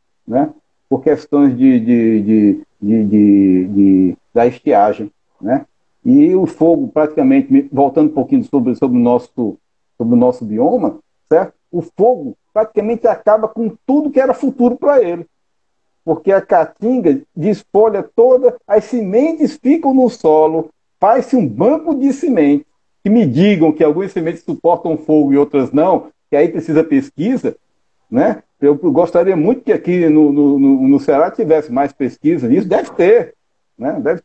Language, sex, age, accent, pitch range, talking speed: Portuguese, male, 60-79, Brazilian, 155-250 Hz, 155 wpm